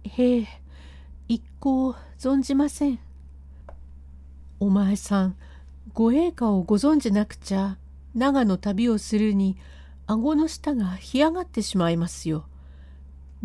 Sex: female